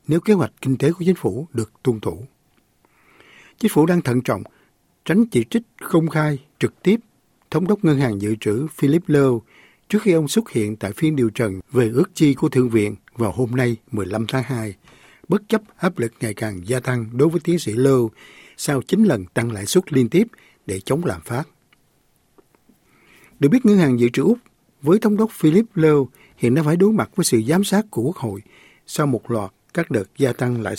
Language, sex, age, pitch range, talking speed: Vietnamese, male, 60-79, 120-180 Hz, 210 wpm